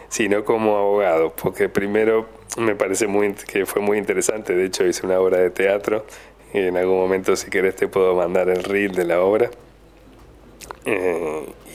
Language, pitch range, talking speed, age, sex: Spanish, 90-110 Hz, 175 wpm, 20-39, male